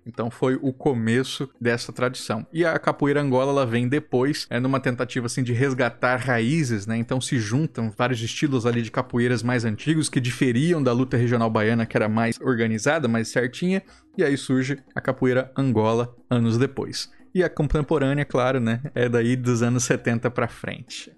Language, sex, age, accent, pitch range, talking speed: Portuguese, male, 20-39, Brazilian, 120-145 Hz, 180 wpm